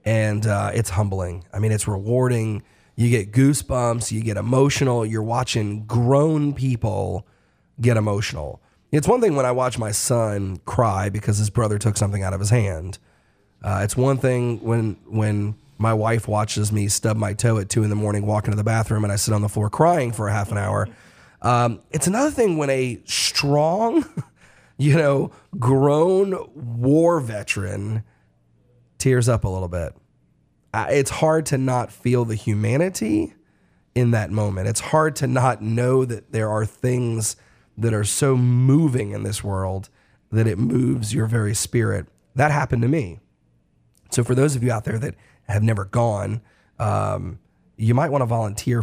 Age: 30-49